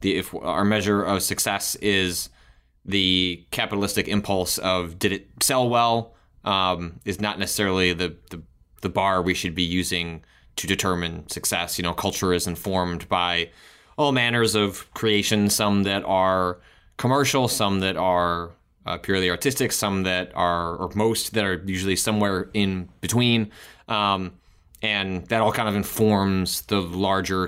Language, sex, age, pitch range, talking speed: English, male, 20-39, 90-105 Hz, 155 wpm